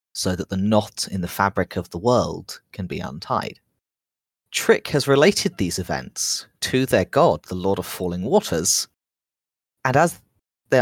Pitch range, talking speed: 85-105 Hz, 160 wpm